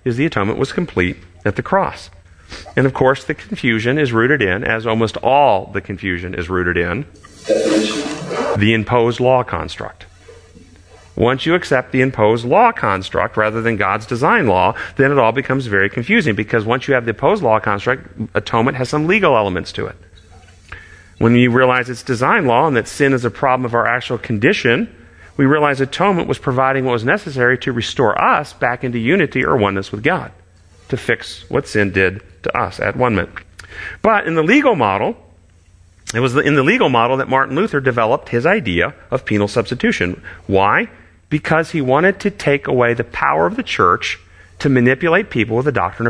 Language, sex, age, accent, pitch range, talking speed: English, male, 40-59, American, 95-135 Hz, 185 wpm